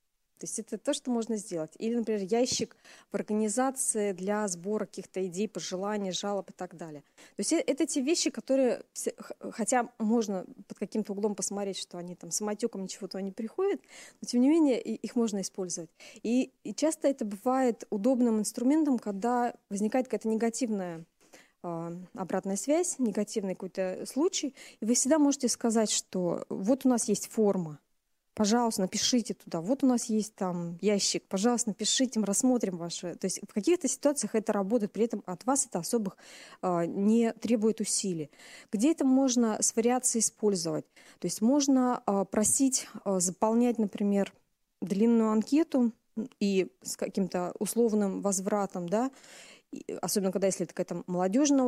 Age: 20-39